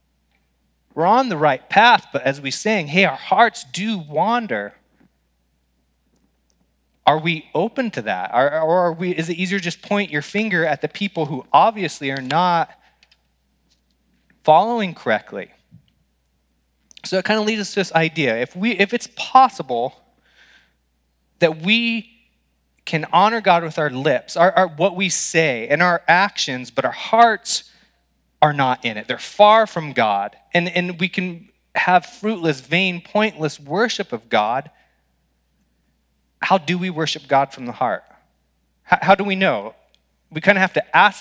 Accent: American